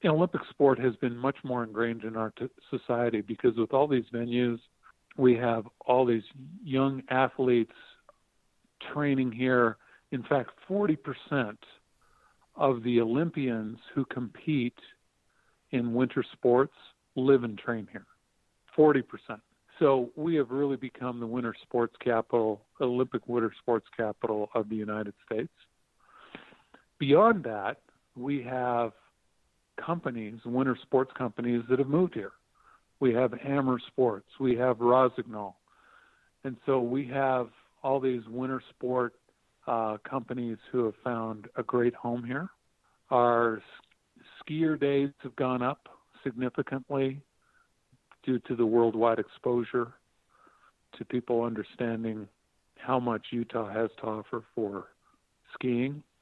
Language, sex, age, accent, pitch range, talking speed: English, male, 50-69, American, 115-135 Hz, 125 wpm